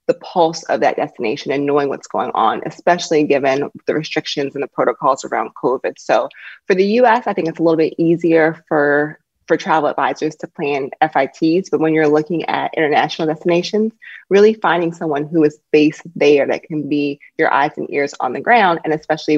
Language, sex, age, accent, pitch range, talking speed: English, female, 20-39, American, 150-175 Hz, 195 wpm